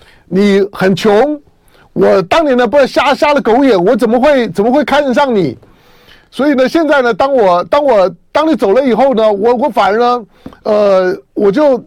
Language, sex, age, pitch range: Chinese, male, 50-69, 190-275 Hz